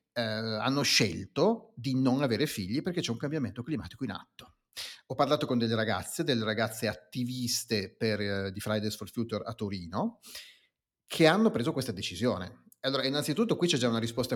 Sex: male